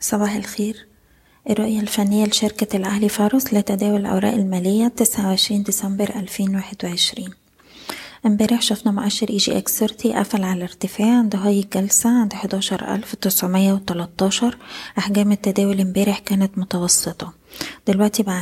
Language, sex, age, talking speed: Arabic, female, 20-39, 110 wpm